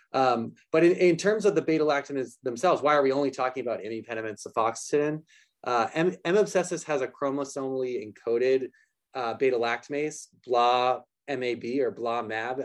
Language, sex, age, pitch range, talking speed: English, male, 20-39, 115-165 Hz, 155 wpm